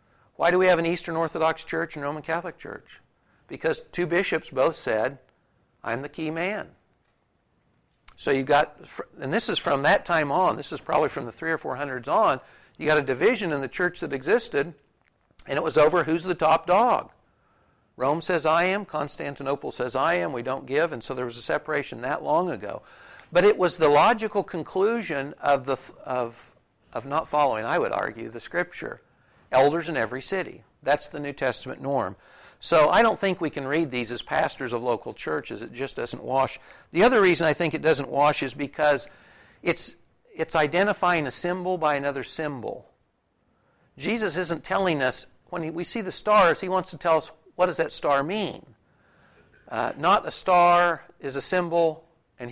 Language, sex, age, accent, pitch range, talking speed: English, male, 60-79, American, 140-175 Hz, 190 wpm